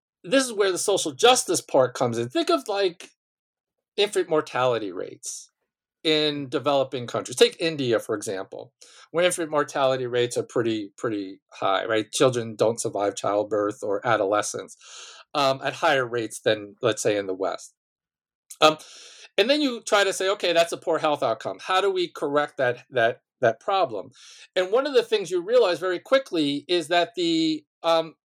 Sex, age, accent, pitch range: male, 50-69, American, 135-190 Hz